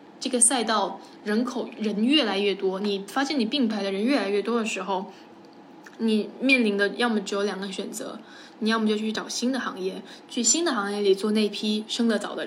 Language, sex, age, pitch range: Chinese, female, 10-29, 200-245 Hz